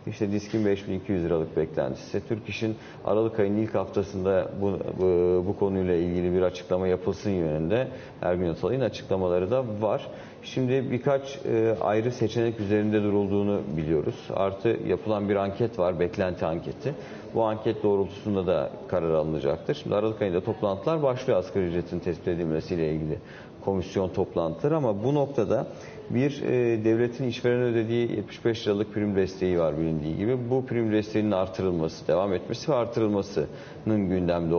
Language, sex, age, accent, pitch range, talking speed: Turkish, male, 40-59, native, 90-115 Hz, 140 wpm